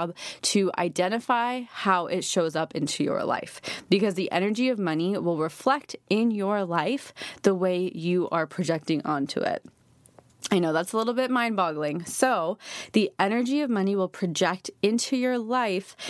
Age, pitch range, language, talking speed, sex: 20-39, 170-205 Hz, English, 160 wpm, female